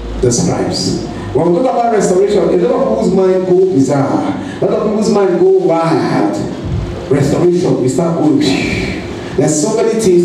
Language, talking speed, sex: English, 170 wpm, male